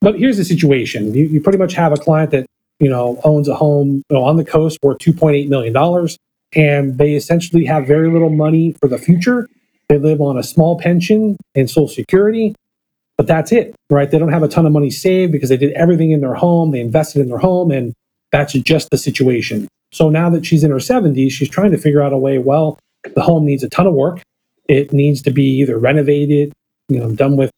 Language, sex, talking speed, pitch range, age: English, male, 230 wpm, 140-165 Hz, 30-49